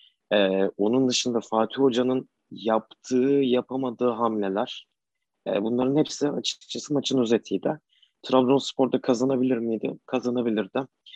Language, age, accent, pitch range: Turkish, 30-49, native, 105-130 Hz